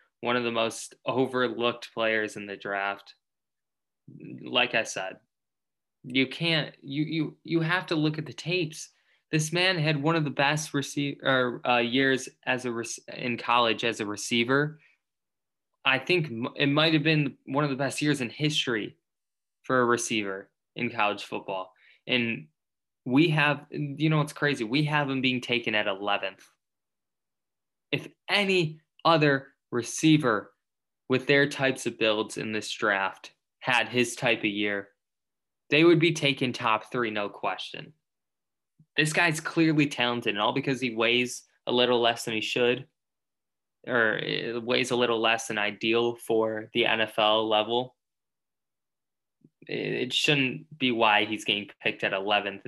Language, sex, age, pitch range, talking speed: English, male, 20-39, 115-150 Hz, 150 wpm